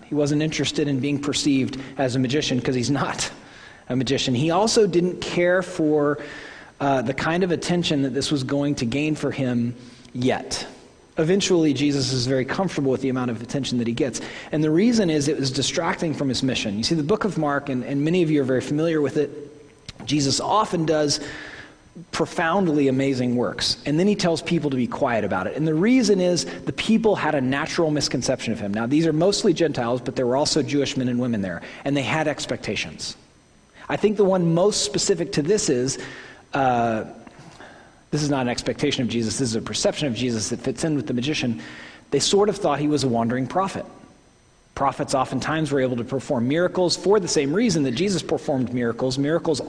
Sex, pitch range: male, 130-165 Hz